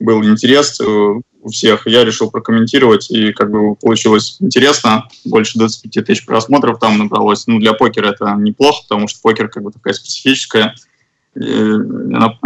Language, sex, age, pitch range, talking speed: Russian, male, 20-39, 110-130 Hz, 150 wpm